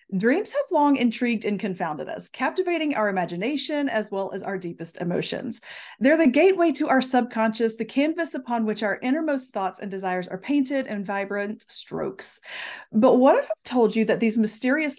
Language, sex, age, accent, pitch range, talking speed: English, female, 30-49, American, 210-285 Hz, 180 wpm